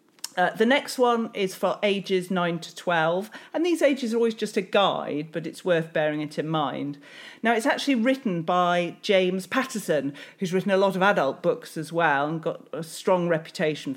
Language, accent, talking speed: English, British, 200 wpm